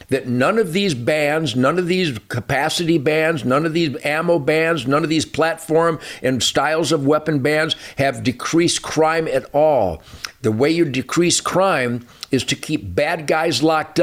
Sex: male